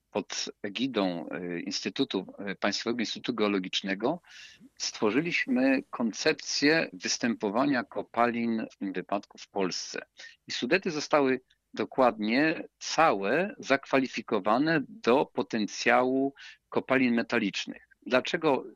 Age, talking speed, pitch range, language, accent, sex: 50-69, 85 wpm, 105-155 Hz, Polish, native, male